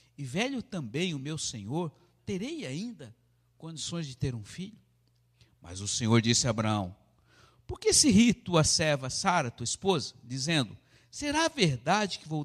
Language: Portuguese